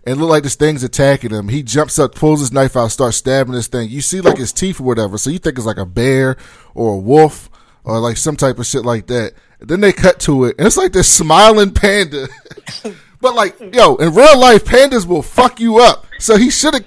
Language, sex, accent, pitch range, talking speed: English, male, American, 115-180 Hz, 245 wpm